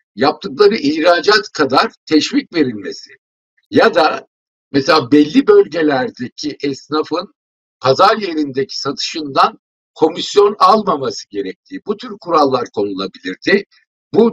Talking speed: 90 wpm